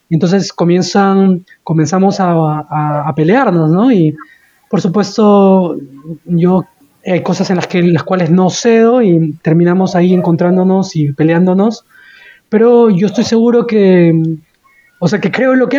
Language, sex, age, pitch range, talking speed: Spanish, male, 20-39, 175-220 Hz, 150 wpm